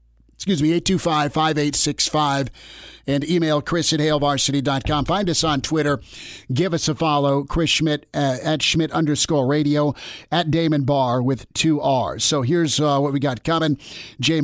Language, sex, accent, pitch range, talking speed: English, male, American, 140-160 Hz, 155 wpm